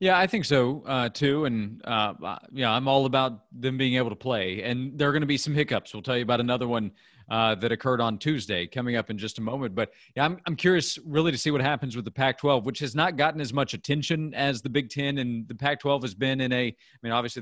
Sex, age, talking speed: male, 40-59, 270 wpm